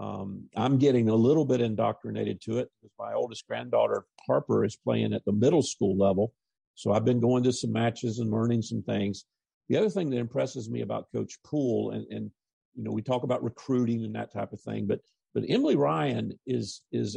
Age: 50-69